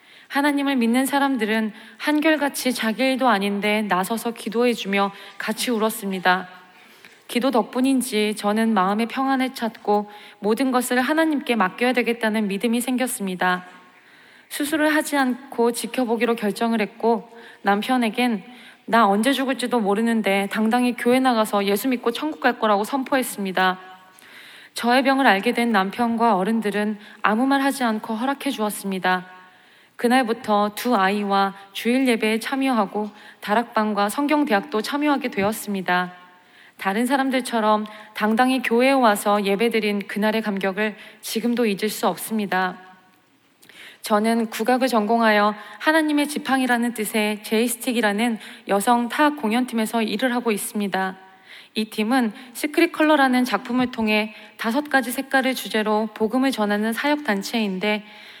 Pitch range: 210-255 Hz